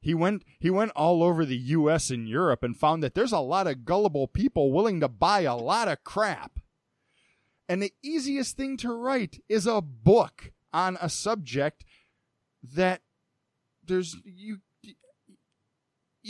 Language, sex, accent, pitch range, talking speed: English, male, American, 130-185 Hz, 150 wpm